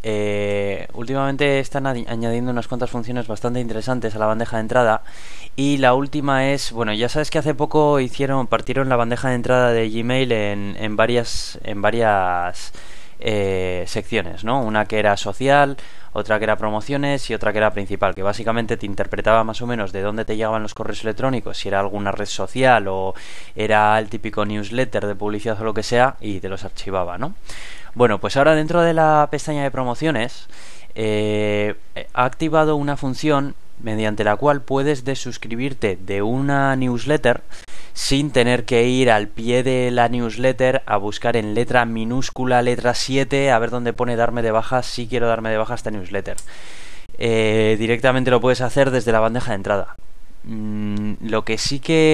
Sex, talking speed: male, 180 wpm